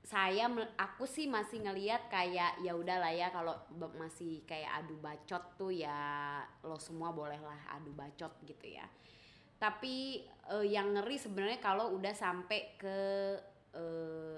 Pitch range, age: 165-200 Hz, 20-39